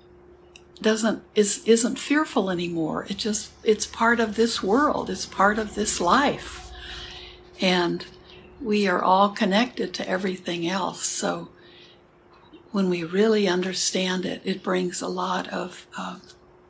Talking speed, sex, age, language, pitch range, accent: 135 wpm, female, 60-79, English, 185-240 Hz, American